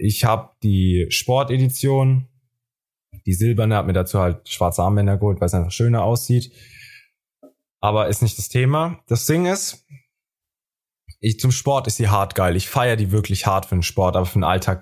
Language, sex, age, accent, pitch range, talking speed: German, male, 20-39, German, 100-130 Hz, 180 wpm